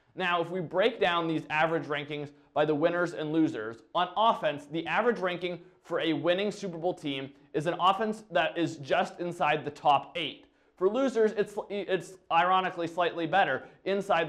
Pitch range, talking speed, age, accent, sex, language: 155-195 Hz, 175 wpm, 20-39, American, male, English